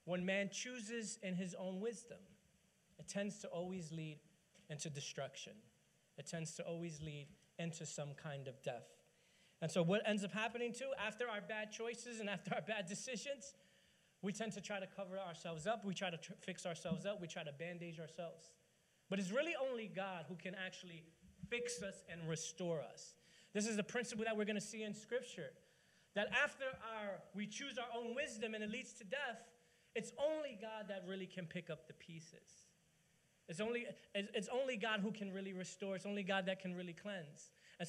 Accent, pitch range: American, 170-215 Hz